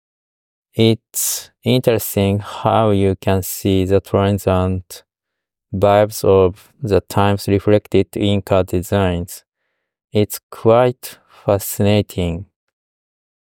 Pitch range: 95-105 Hz